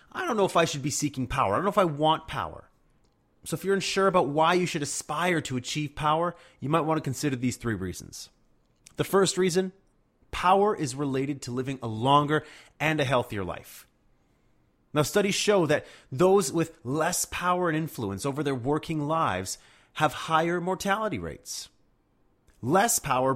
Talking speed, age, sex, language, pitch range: 180 wpm, 30-49, male, English, 135-175 Hz